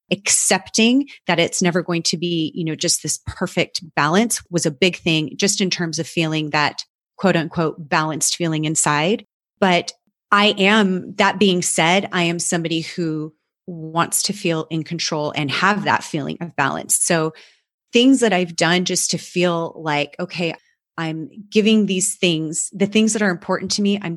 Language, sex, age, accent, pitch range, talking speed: English, female, 30-49, American, 160-190 Hz, 175 wpm